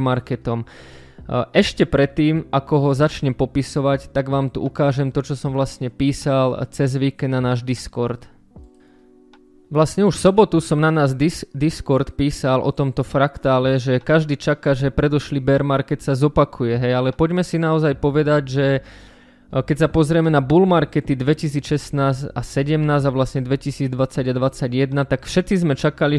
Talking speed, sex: 150 wpm, male